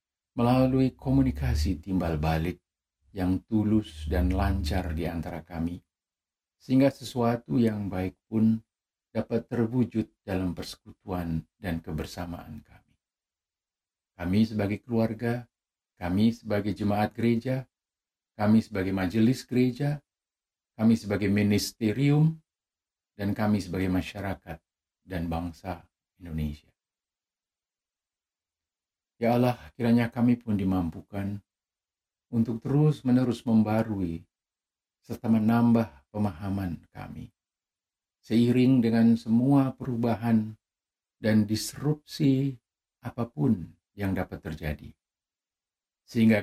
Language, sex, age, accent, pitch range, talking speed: Indonesian, male, 50-69, native, 90-115 Hz, 90 wpm